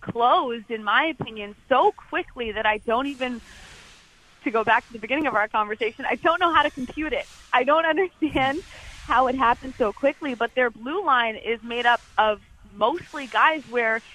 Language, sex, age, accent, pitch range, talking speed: English, female, 20-39, American, 210-265 Hz, 190 wpm